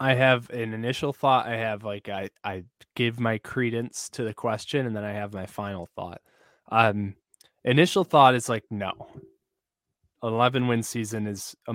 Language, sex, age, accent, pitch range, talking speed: English, male, 20-39, American, 105-130 Hz, 175 wpm